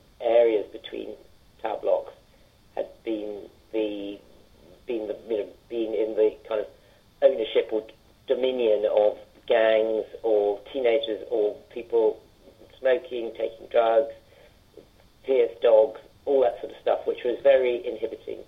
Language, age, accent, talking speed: English, 50-69, British, 125 wpm